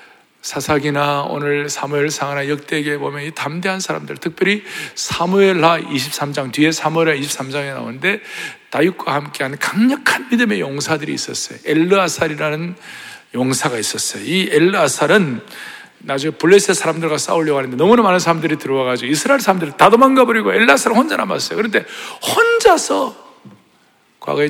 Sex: male